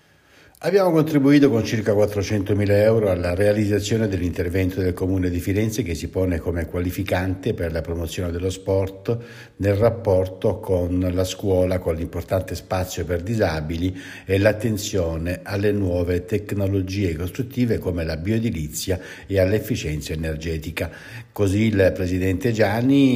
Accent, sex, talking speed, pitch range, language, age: native, male, 125 wpm, 90-110 Hz, Italian, 60-79